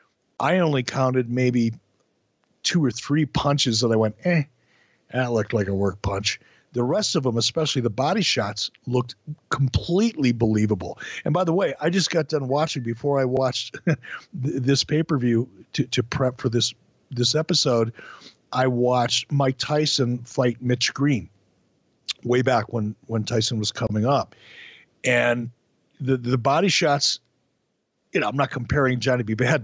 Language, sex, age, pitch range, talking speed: English, male, 50-69, 115-140 Hz, 155 wpm